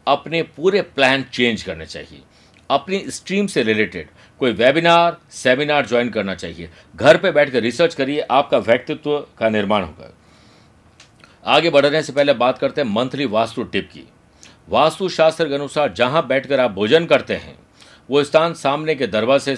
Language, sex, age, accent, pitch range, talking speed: Hindi, male, 50-69, native, 120-150 Hz, 155 wpm